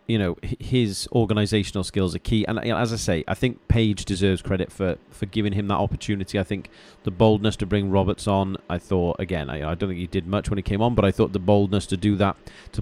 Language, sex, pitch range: English, male, 90-105 Hz